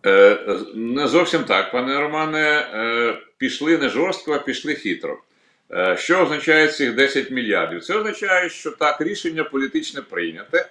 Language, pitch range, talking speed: Ukrainian, 110-165 Hz, 130 wpm